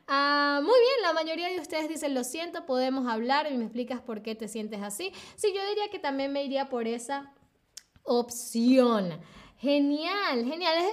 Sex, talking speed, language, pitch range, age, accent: female, 170 wpm, Spanish, 235-310 Hz, 10-29, American